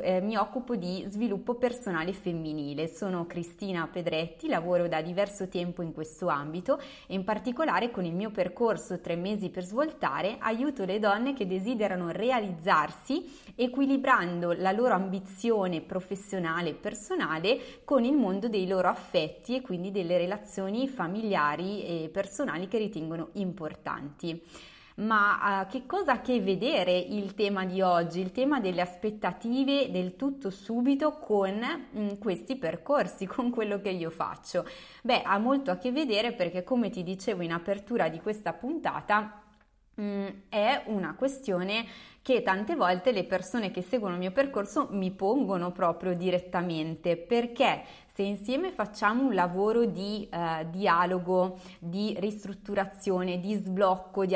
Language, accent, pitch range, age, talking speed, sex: Italian, native, 180-225 Hz, 20-39, 140 wpm, female